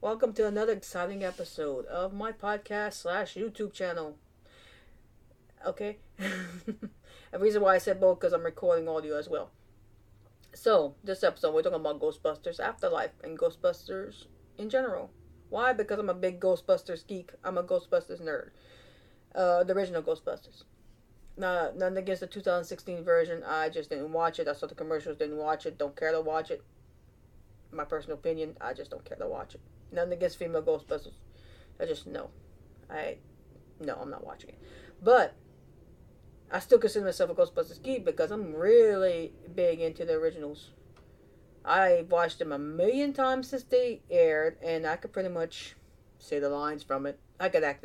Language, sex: English, female